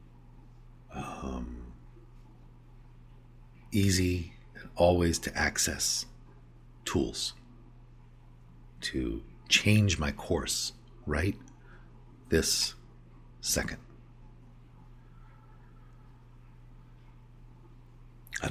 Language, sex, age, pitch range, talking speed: English, male, 50-69, 90-125 Hz, 50 wpm